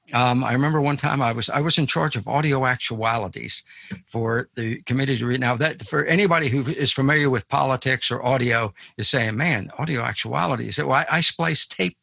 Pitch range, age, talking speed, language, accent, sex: 120-155 Hz, 60-79, 205 wpm, English, American, male